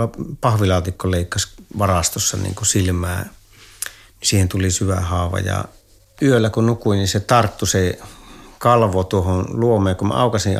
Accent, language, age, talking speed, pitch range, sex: native, Finnish, 50-69, 130 wpm, 90-105 Hz, male